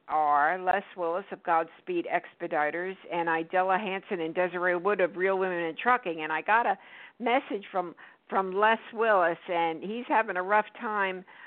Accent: American